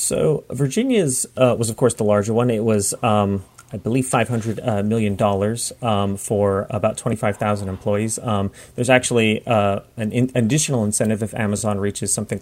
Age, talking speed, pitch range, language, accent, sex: 30-49, 170 wpm, 105-125 Hz, English, American, male